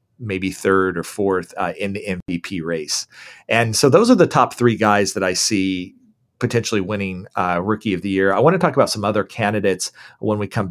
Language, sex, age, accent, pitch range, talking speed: English, male, 40-59, American, 100-125 Hz, 215 wpm